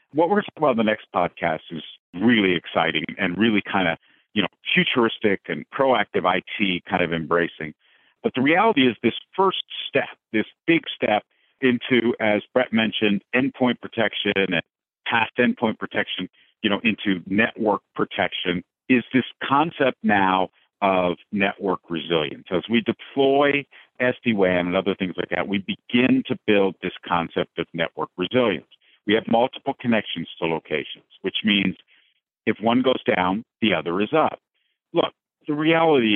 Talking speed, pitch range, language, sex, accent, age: 155 wpm, 90-120 Hz, English, male, American, 50-69